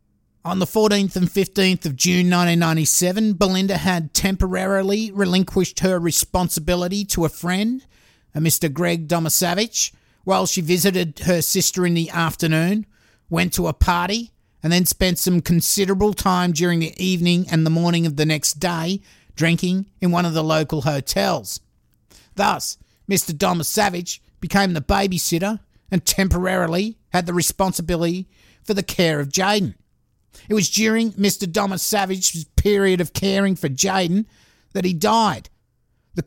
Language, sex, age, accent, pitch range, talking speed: English, male, 50-69, Australian, 160-195 Hz, 145 wpm